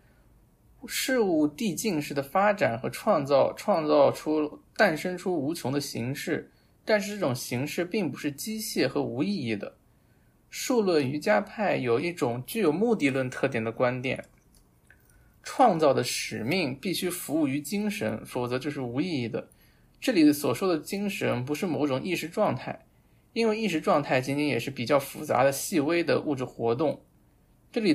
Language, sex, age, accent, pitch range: Chinese, male, 20-39, native, 130-190 Hz